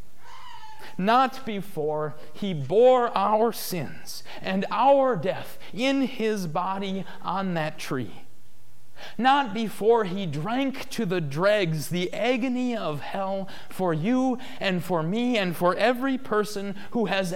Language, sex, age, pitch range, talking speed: English, male, 40-59, 150-220 Hz, 130 wpm